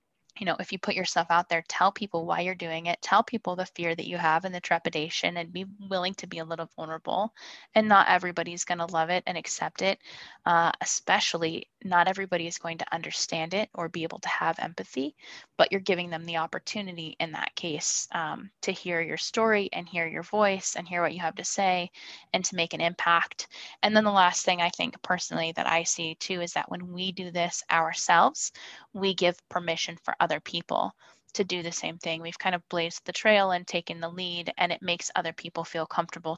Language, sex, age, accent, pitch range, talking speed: English, female, 10-29, American, 170-190 Hz, 225 wpm